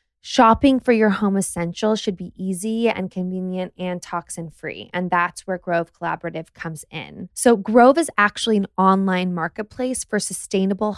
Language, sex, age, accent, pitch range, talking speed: English, female, 20-39, American, 180-220 Hz, 155 wpm